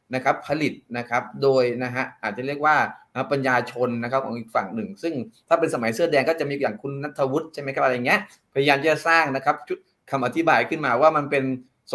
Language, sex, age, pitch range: Thai, male, 20-39, 125-155 Hz